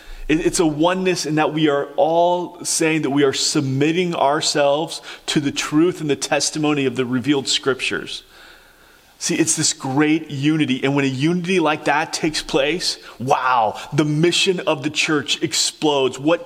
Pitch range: 140-165 Hz